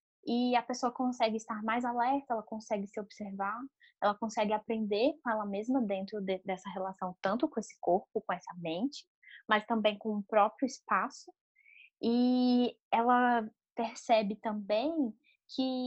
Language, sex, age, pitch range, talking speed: Portuguese, female, 10-29, 205-265 Hz, 145 wpm